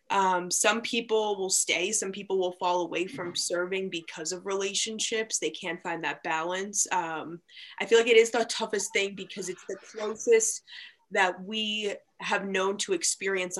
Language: English